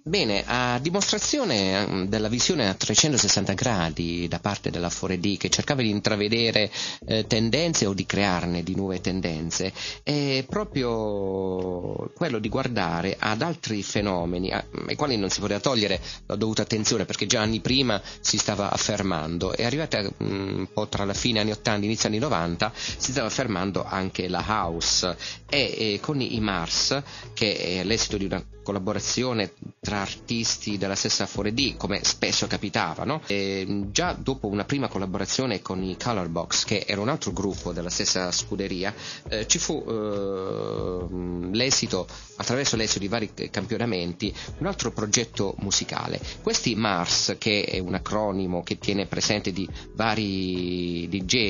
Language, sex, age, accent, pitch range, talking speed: Italian, male, 30-49, native, 95-115 Hz, 150 wpm